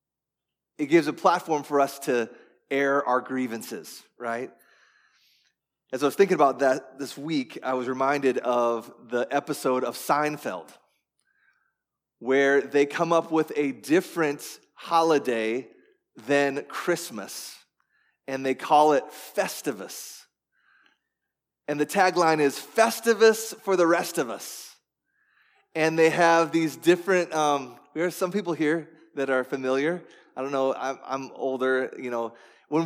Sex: male